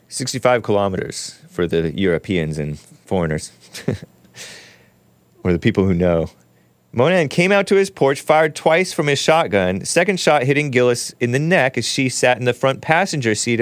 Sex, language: male, English